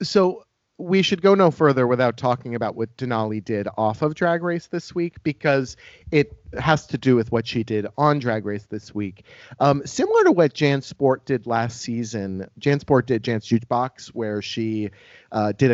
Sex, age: male, 30-49